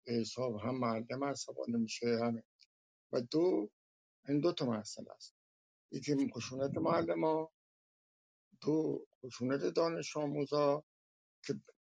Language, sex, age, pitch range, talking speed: Persian, male, 60-79, 110-130 Hz, 115 wpm